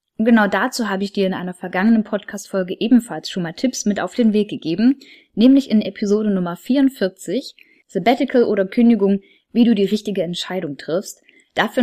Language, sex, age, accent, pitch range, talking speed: German, female, 10-29, German, 190-240 Hz, 170 wpm